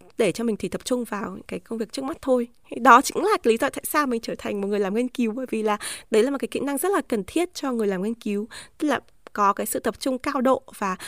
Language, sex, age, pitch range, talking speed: Vietnamese, female, 20-39, 215-310 Hz, 310 wpm